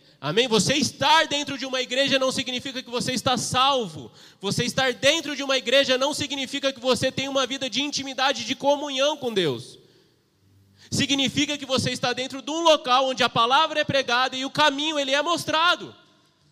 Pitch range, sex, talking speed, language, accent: 210-280 Hz, male, 185 wpm, Portuguese, Brazilian